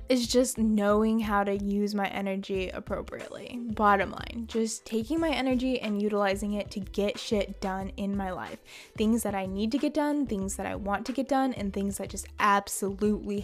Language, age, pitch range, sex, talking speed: English, 10-29, 200-260 Hz, female, 195 wpm